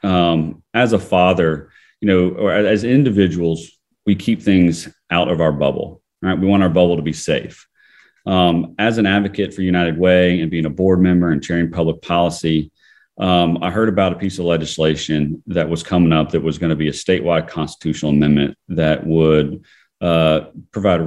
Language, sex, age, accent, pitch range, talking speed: English, male, 40-59, American, 80-95 Hz, 185 wpm